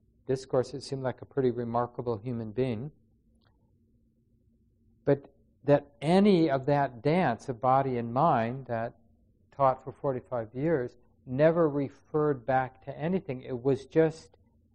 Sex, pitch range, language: male, 115-140 Hz, English